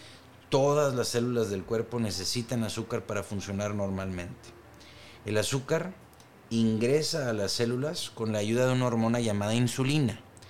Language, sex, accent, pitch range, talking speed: Spanish, male, Mexican, 105-125 Hz, 135 wpm